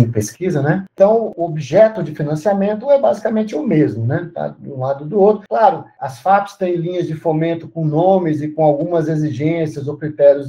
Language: Portuguese